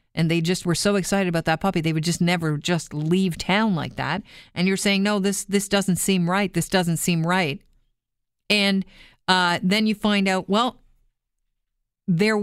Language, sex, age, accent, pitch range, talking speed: English, female, 40-59, American, 170-205 Hz, 190 wpm